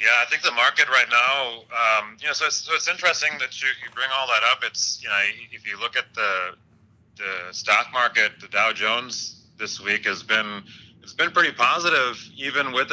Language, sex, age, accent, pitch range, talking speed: English, male, 30-49, American, 100-115 Hz, 215 wpm